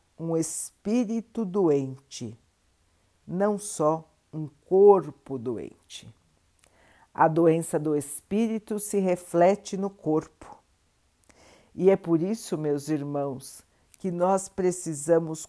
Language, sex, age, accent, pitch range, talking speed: Portuguese, female, 50-69, Brazilian, 140-190 Hz, 95 wpm